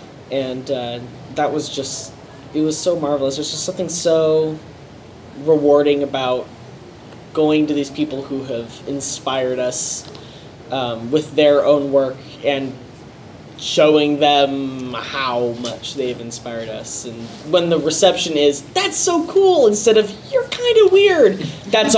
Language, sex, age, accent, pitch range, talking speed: English, male, 10-29, American, 135-170 Hz, 140 wpm